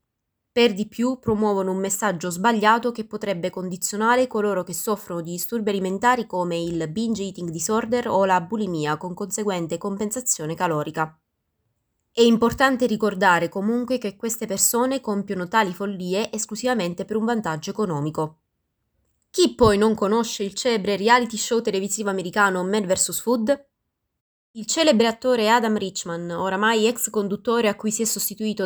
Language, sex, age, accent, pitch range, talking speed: Italian, female, 20-39, native, 185-235 Hz, 145 wpm